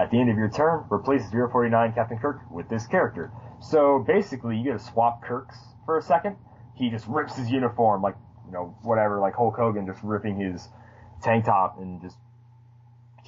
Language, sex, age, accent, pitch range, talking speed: English, male, 20-39, American, 100-125 Hz, 190 wpm